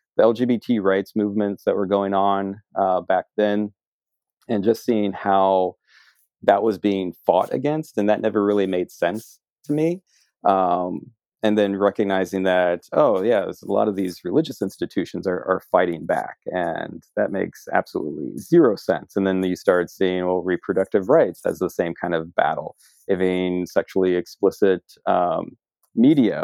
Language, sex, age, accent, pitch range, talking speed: English, male, 30-49, American, 90-110 Hz, 160 wpm